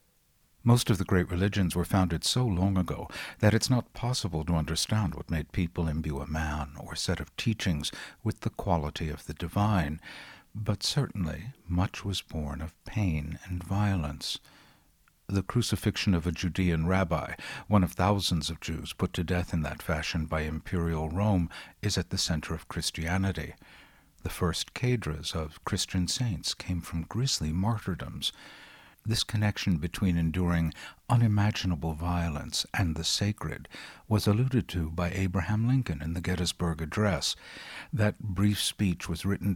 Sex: male